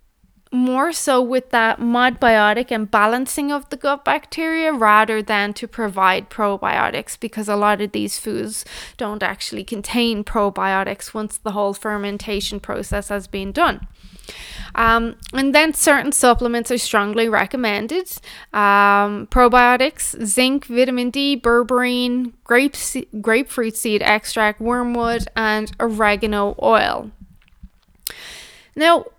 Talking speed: 115 wpm